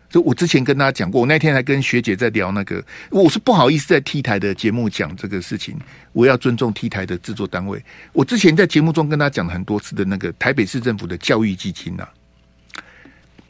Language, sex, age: Chinese, male, 50-69